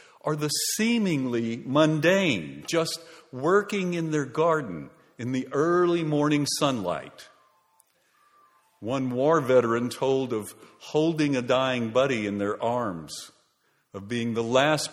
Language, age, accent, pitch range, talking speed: English, 50-69, American, 125-175 Hz, 120 wpm